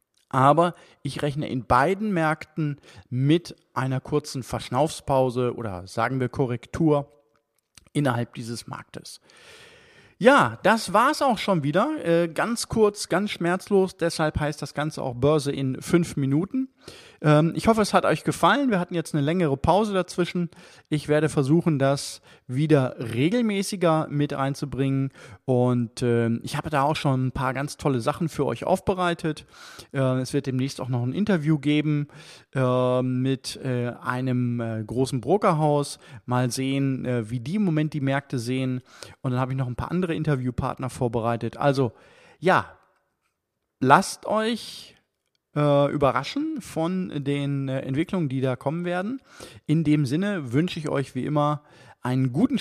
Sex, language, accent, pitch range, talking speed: male, German, German, 130-165 Hz, 140 wpm